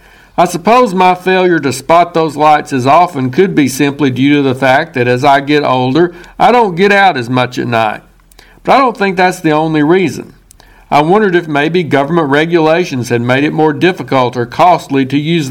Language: English